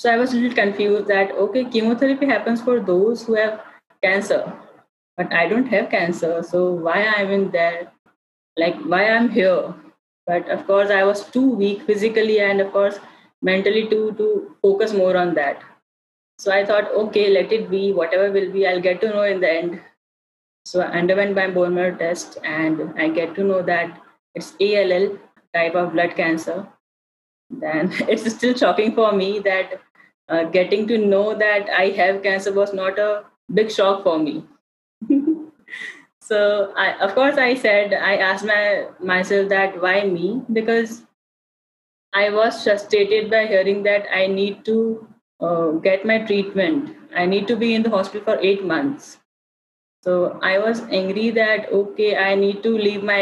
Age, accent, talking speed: 20-39, Indian, 175 wpm